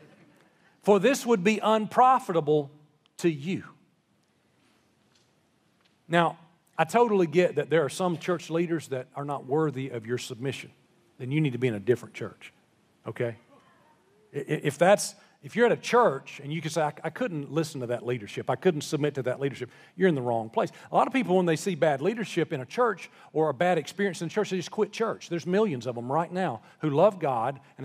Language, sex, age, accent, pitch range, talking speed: English, male, 40-59, American, 150-210 Hz, 205 wpm